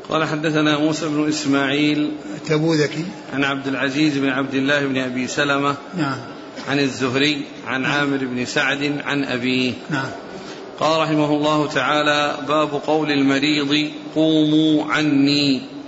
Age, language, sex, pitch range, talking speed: 50-69, Arabic, male, 145-160 Hz, 115 wpm